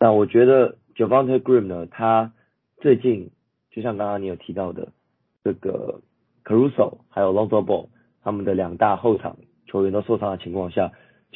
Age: 40-59